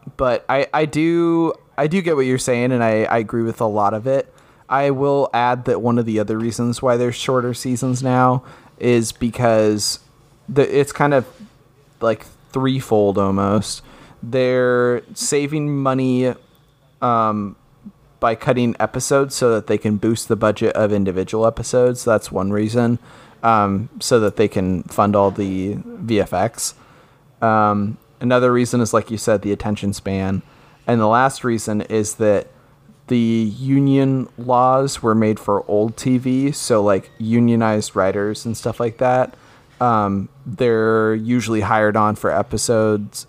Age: 30-49